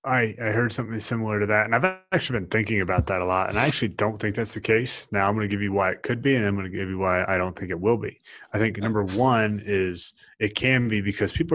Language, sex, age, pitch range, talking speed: English, male, 30-49, 90-110 Hz, 295 wpm